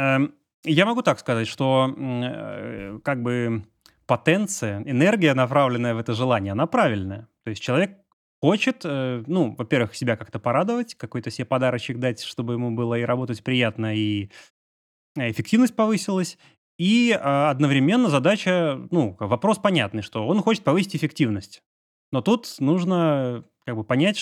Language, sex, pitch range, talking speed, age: Russian, male, 115-155 Hz, 130 wpm, 30-49